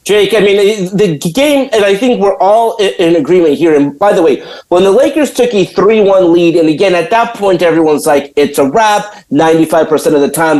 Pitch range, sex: 165-225 Hz, male